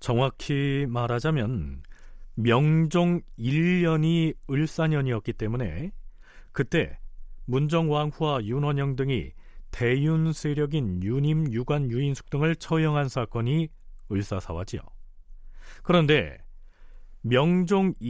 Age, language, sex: 40-59, Korean, male